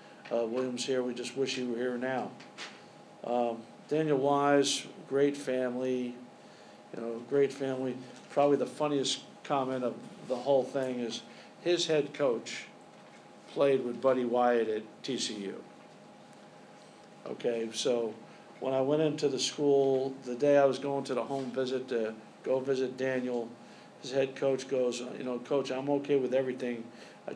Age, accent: 50-69, American